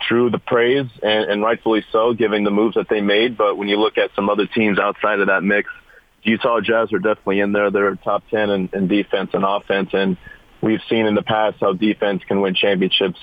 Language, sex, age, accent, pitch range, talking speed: English, male, 40-59, American, 95-105 Hz, 225 wpm